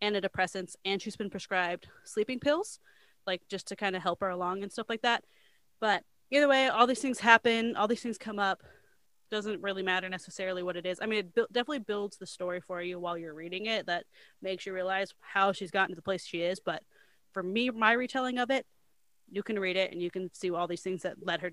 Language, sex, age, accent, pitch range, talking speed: English, female, 20-39, American, 180-210 Hz, 235 wpm